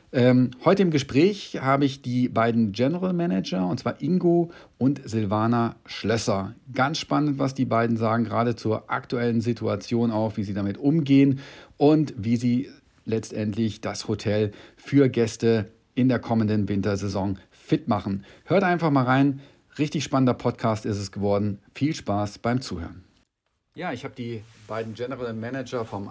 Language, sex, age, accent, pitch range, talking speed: German, male, 40-59, German, 105-130 Hz, 150 wpm